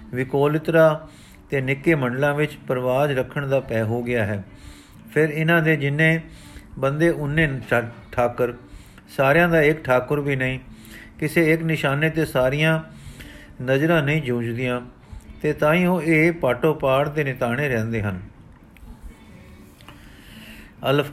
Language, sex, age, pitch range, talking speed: Punjabi, male, 50-69, 125-155 Hz, 130 wpm